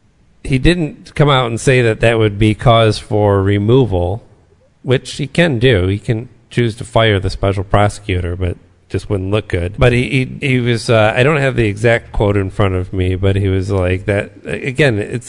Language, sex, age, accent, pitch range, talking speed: English, male, 40-59, American, 100-120 Hz, 210 wpm